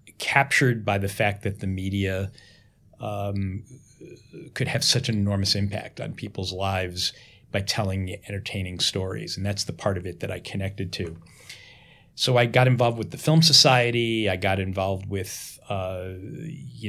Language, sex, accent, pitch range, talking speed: English, male, American, 95-115 Hz, 160 wpm